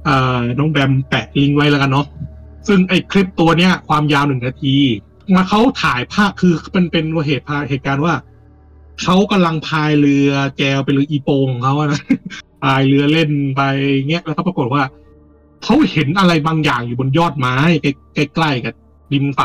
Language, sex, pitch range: Thai, male, 135-190 Hz